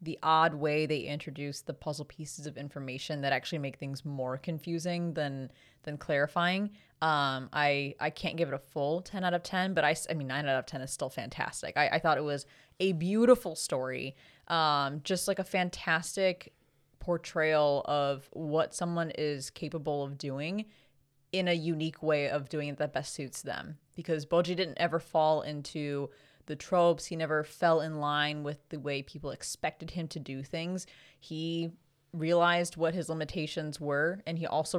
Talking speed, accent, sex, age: 180 wpm, American, female, 20-39